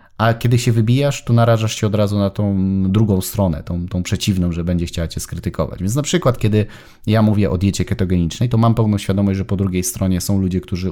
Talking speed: 225 wpm